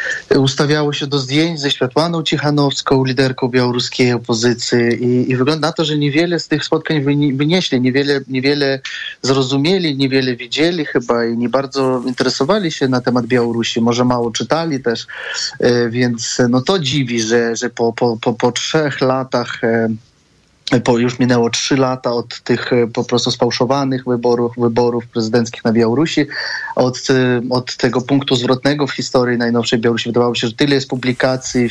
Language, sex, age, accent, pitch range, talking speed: Polish, male, 20-39, native, 125-145 Hz, 155 wpm